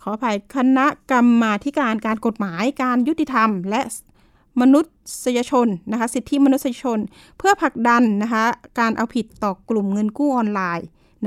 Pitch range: 215-275 Hz